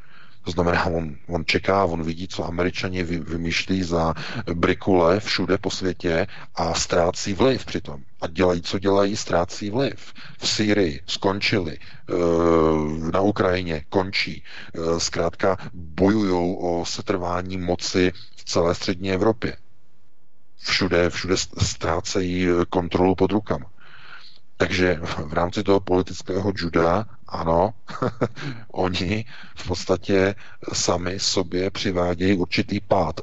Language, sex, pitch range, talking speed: Czech, male, 85-105 Hz, 110 wpm